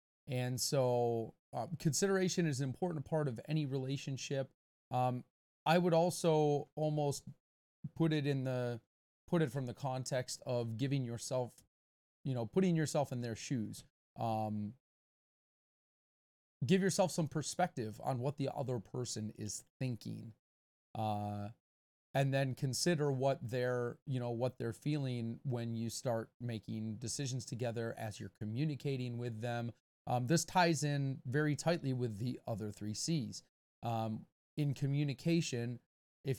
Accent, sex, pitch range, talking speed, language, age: American, male, 110-140 Hz, 140 wpm, English, 30-49